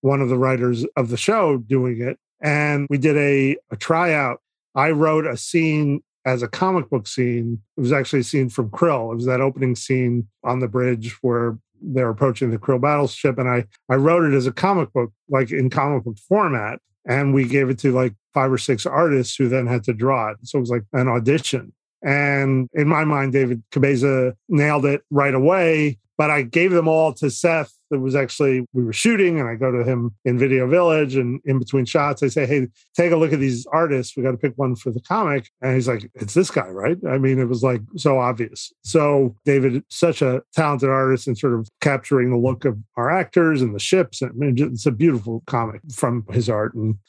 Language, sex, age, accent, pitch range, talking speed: English, male, 40-59, American, 125-150 Hz, 220 wpm